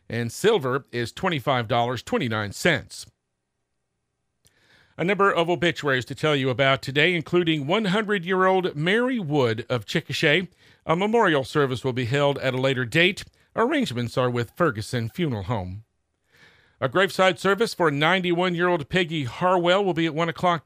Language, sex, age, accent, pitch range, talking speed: English, male, 50-69, American, 130-180 Hz, 135 wpm